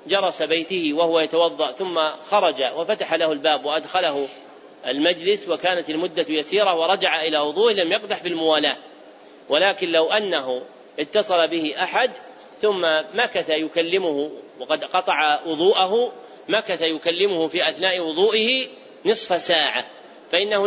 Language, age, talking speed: Arabic, 40-59, 120 wpm